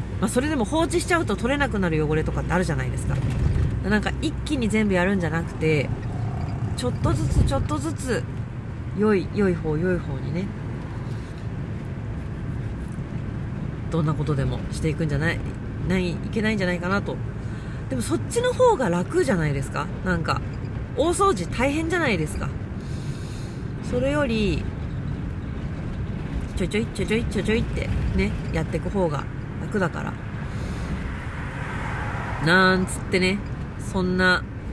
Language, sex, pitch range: Japanese, female, 125-185 Hz